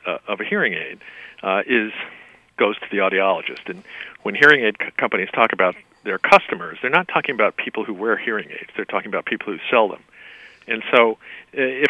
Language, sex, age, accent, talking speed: English, male, 50-69, American, 200 wpm